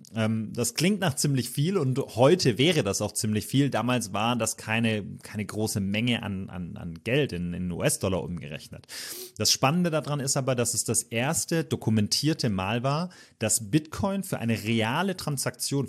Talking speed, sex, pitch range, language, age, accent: 165 wpm, male, 105-135 Hz, German, 30-49, German